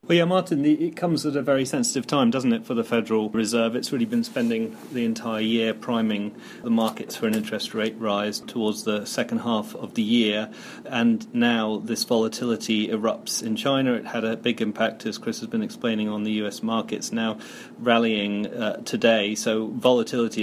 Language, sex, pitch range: English, male, 110-155 Hz